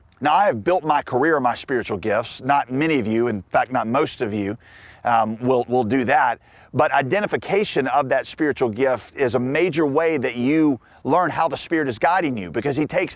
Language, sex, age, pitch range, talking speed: English, male, 40-59, 125-170 Hz, 210 wpm